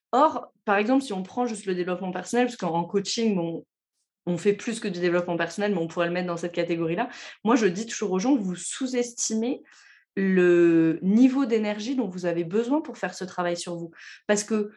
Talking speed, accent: 210 wpm, French